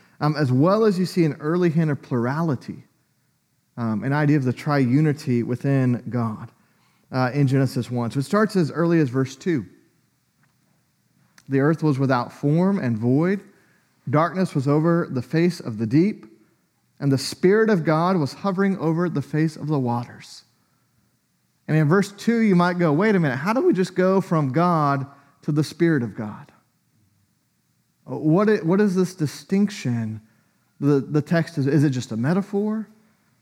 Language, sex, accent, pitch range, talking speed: English, male, American, 125-170 Hz, 165 wpm